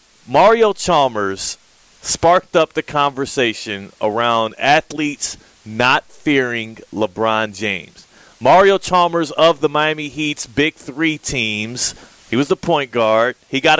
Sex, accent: male, American